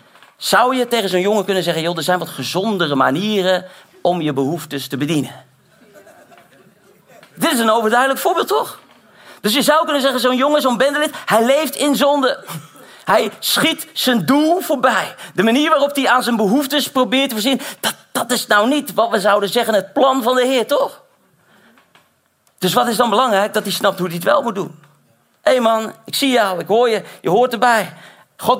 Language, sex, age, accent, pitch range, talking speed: Dutch, male, 40-59, Dutch, 185-250 Hz, 195 wpm